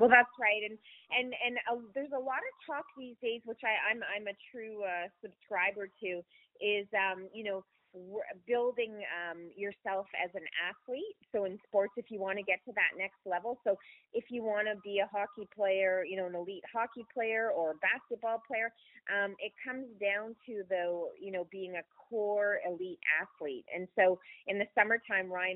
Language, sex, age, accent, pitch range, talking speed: English, female, 30-49, American, 185-230 Hz, 195 wpm